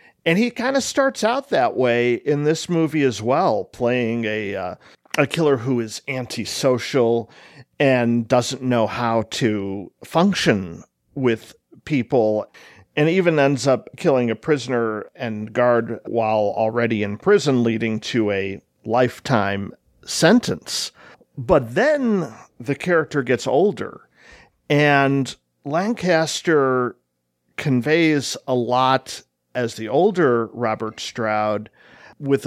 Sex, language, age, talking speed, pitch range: male, English, 50-69, 120 wpm, 110-140 Hz